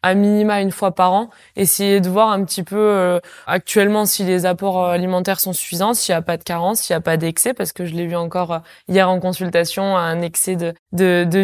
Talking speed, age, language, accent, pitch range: 240 wpm, 20-39, French, French, 170-195 Hz